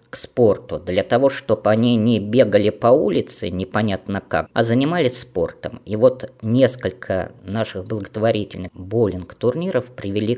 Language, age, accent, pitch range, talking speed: Russian, 20-39, native, 100-125 Hz, 125 wpm